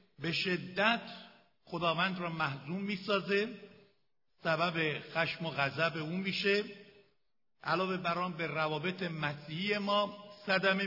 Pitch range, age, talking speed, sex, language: 150-195 Hz, 60-79, 105 wpm, male, Persian